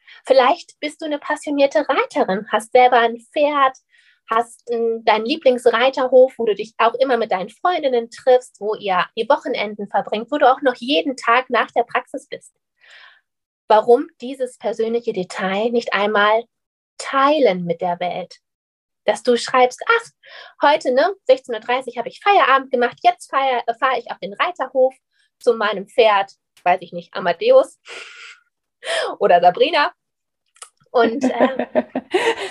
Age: 20-39